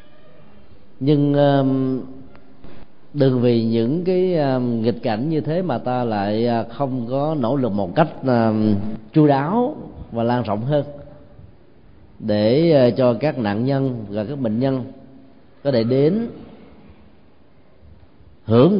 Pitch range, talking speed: 115-150 Hz, 120 wpm